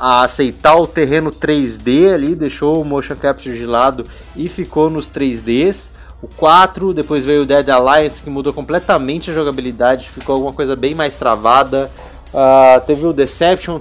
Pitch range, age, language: 130-165 Hz, 20-39, Portuguese